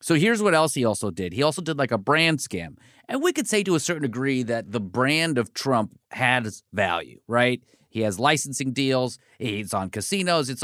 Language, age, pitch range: English, 30-49, 120-170 Hz